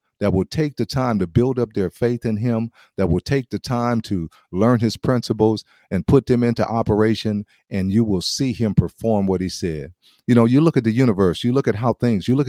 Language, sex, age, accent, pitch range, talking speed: English, male, 50-69, American, 100-125 Hz, 235 wpm